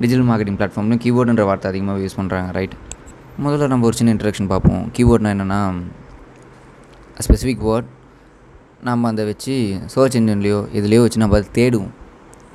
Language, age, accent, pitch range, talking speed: Tamil, 20-39, native, 100-120 Hz, 140 wpm